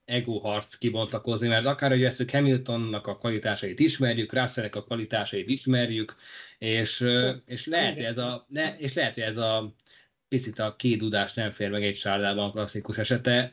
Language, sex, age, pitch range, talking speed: Hungarian, male, 20-39, 110-130 Hz, 150 wpm